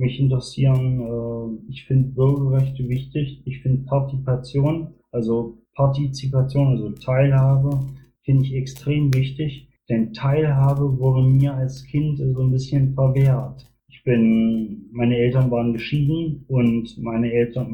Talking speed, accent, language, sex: 125 wpm, German, German, male